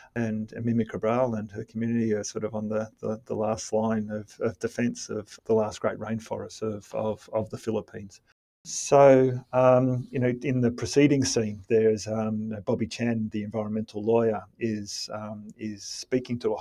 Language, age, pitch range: English, 40-59, 110-120 Hz